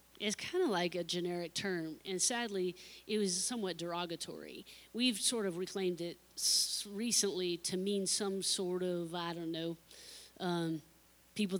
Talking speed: 155 wpm